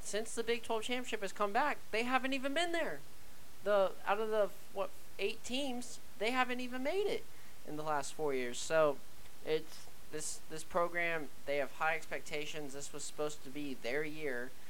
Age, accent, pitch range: 20-39, American, 130-190 Hz